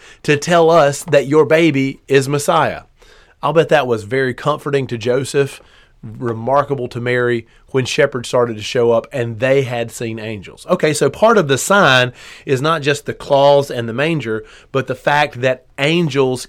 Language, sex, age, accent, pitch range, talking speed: English, male, 30-49, American, 120-145 Hz, 180 wpm